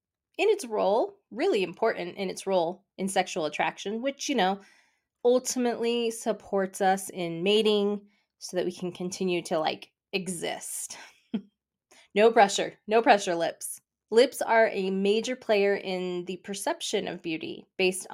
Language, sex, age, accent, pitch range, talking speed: English, female, 20-39, American, 180-225 Hz, 140 wpm